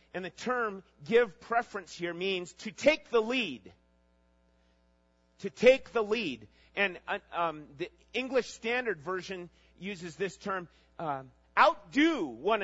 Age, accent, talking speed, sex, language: 40-59, American, 135 wpm, male, English